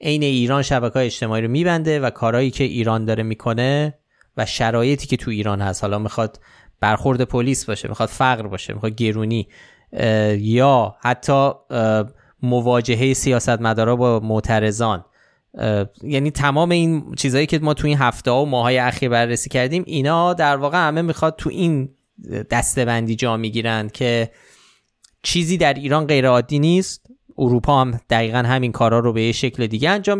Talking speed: 145 wpm